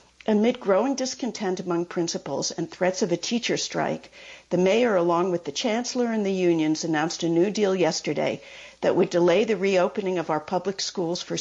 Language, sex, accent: English, female, American